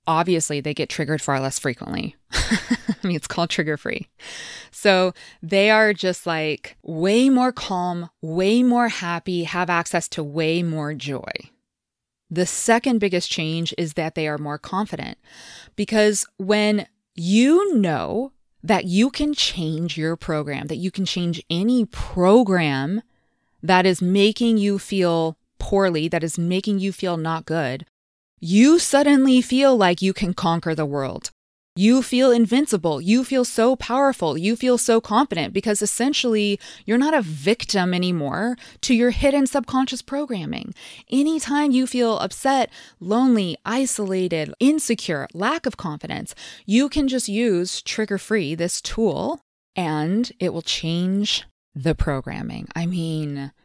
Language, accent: English, American